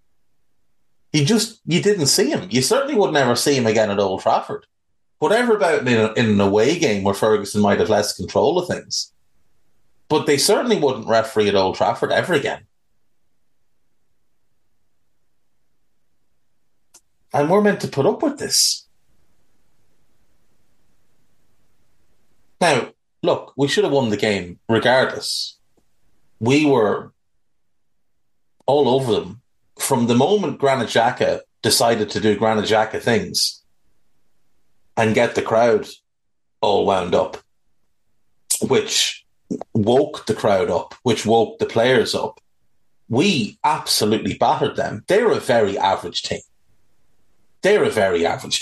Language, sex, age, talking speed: English, male, 30-49, 125 wpm